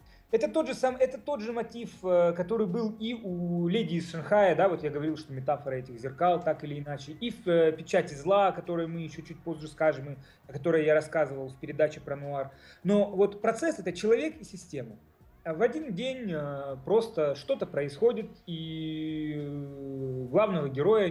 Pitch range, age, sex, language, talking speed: 155-230 Hz, 30-49, male, Russian, 180 wpm